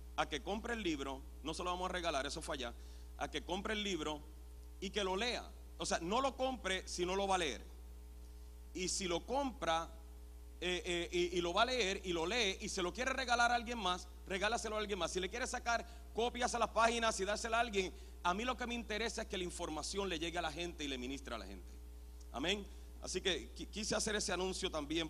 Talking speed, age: 240 wpm, 40-59